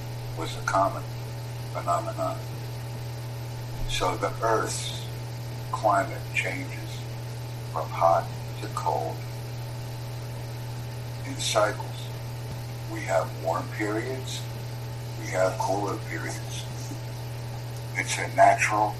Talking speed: 80 wpm